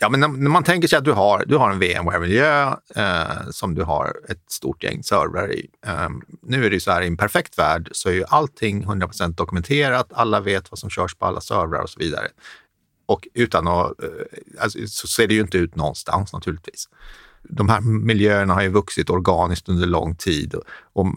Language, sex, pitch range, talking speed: Swedish, male, 85-110 Hz, 215 wpm